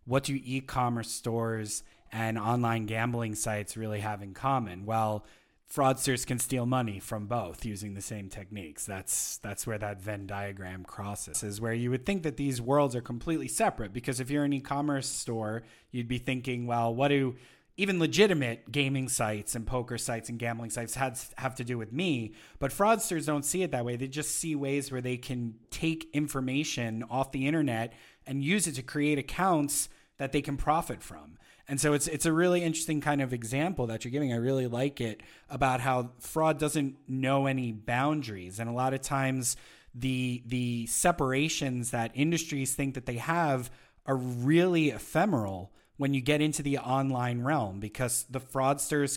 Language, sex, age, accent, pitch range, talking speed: English, male, 30-49, American, 115-145 Hz, 180 wpm